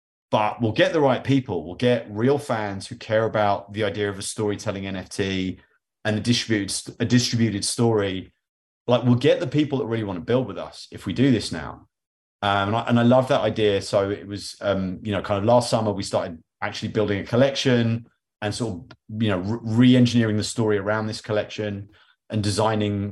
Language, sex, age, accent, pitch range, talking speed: English, male, 30-49, British, 100-120 Hz, 205 wpm